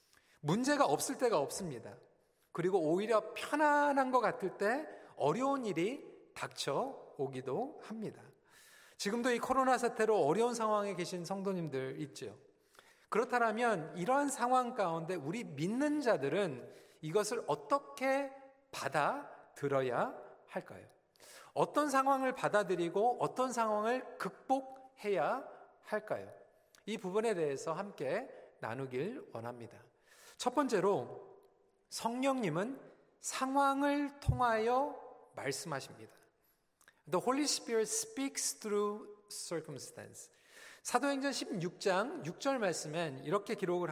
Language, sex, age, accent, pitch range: Korean, male, 40-59, native, 195-275 Hz